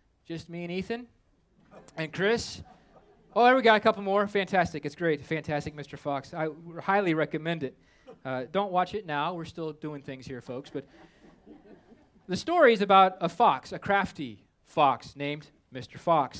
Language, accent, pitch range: English, American, 145-195 Hz